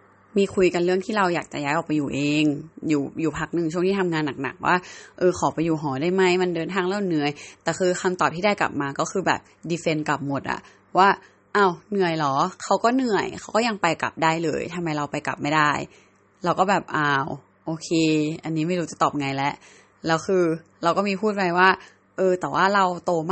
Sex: female